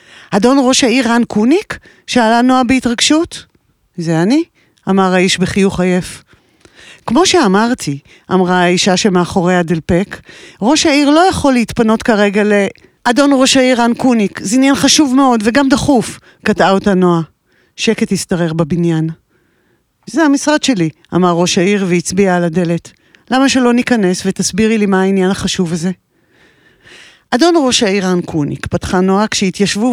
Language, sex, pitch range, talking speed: Hebrew, female, 180-255 Hz, 140 wpm